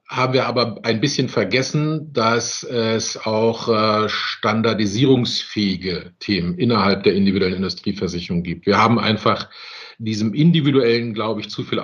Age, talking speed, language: 50-69, 125 wpm, German